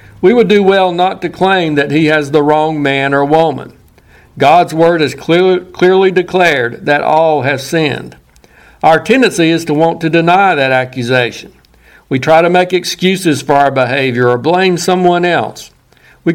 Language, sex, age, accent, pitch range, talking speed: English, male, 60-79, American, 140-180 Hz, 175 wpm